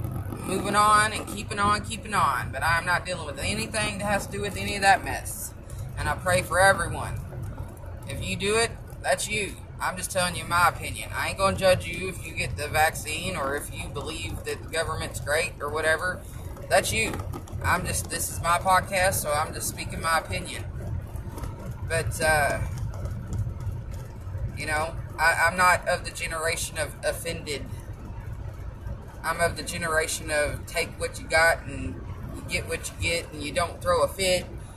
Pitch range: 95-140 Hz